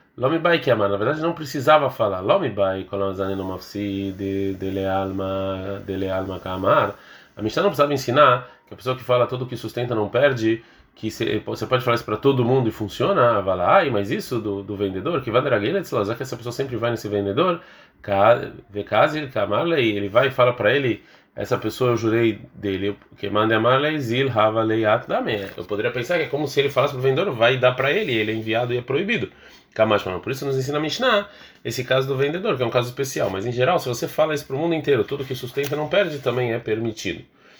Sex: male